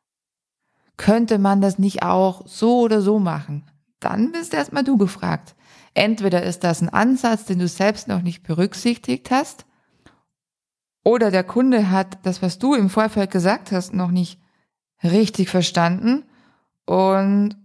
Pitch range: 180-220 Hz